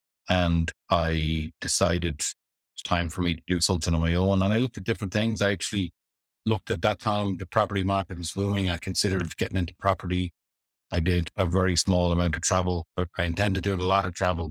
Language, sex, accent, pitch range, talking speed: English, male, Irish, 85-95 Hz, 215 wpm